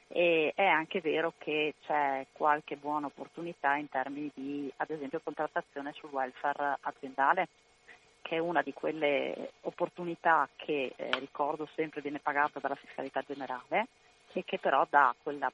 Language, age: Italian, 30-49